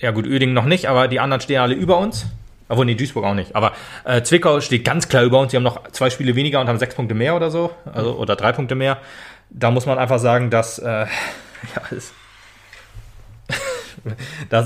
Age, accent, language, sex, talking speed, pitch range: 30-49, German, German, male, 220 wpm, 115-135 Hz